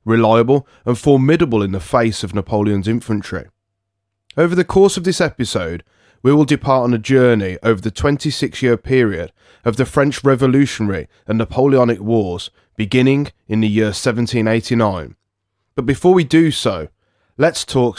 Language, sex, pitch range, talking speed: English, male, 105-135 Hz, 145 wpm